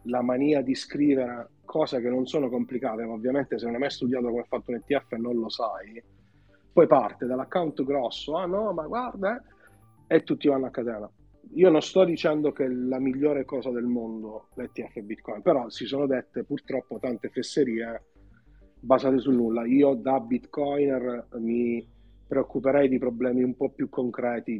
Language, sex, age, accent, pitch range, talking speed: Italian, male, 40-59, native, 115-135 Hz, 175 wpm